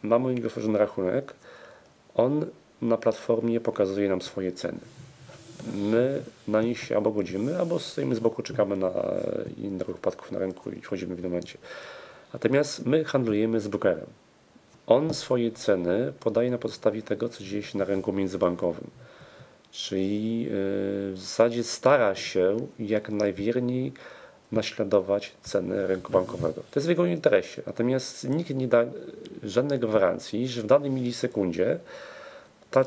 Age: 40-59